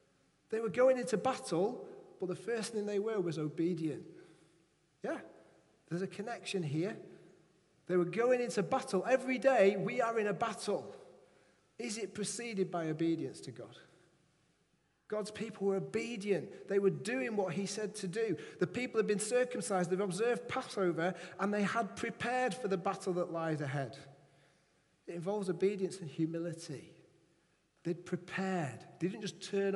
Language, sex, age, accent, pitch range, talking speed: English, male, 40-59, British, 180-215 Hz, 155 wpm